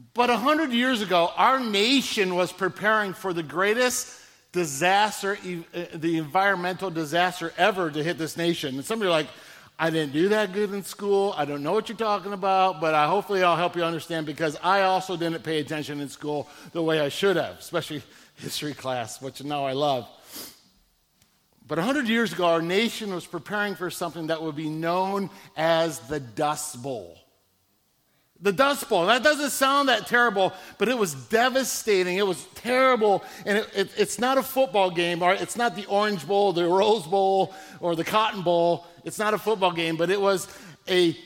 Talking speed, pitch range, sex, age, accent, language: 190 wpm, 160-205 Hz, male, 50-69, American, English